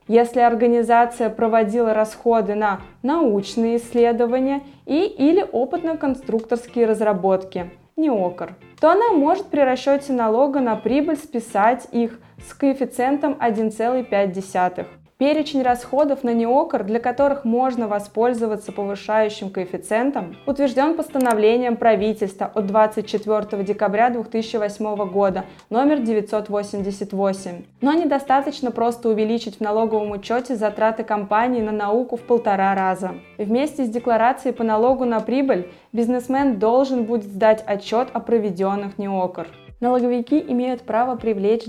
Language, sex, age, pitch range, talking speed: Russian, female, 20-39, 210-255 Hz, 110 wpm